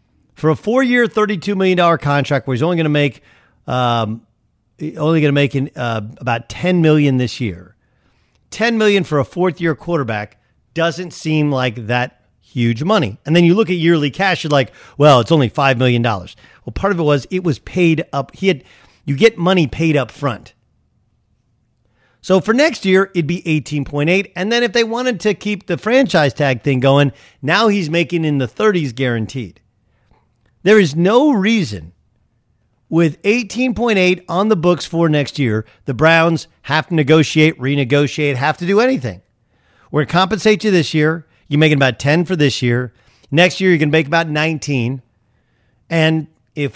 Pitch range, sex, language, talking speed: 125-175 Hz, male, English, 180 wpm